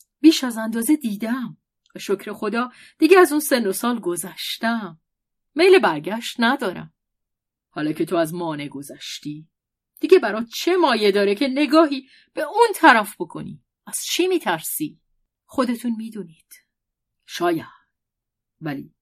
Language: Persian